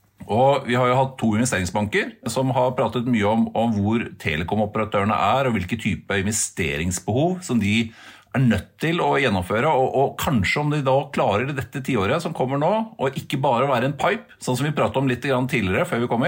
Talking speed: 210 wpm